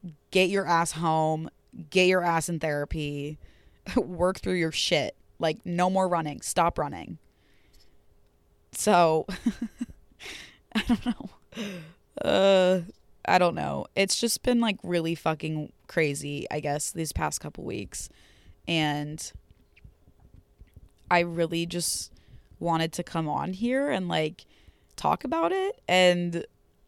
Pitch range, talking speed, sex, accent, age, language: 155-190 Hz, 125 wpm, female, American, 20-39, English